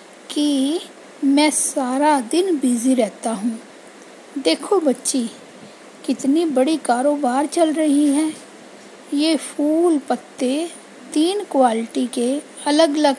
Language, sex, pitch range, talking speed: Hindi, female, 265-315 Hz, 105 wpm